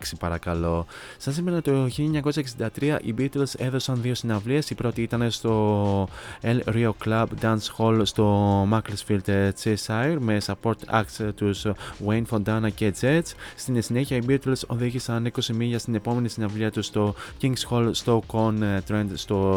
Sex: male